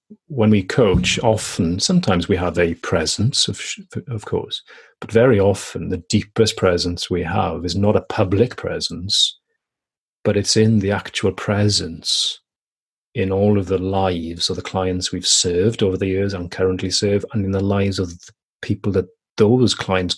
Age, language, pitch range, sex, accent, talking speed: 40-59, English, 95-110 Hz, male, British, 170 wpm